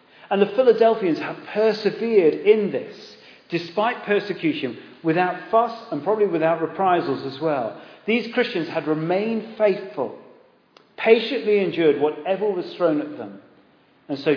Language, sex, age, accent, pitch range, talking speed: English, male, 40-59, British, 145-210 Hz, 130 wpm